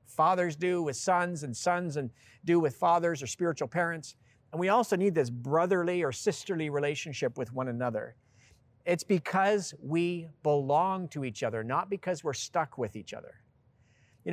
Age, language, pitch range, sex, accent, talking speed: 50-69, English, 125-165 Hz, male, American, 170 wpm